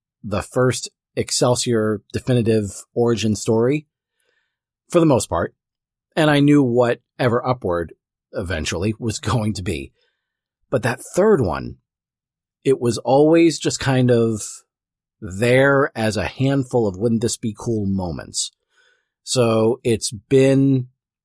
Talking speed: 125 wpm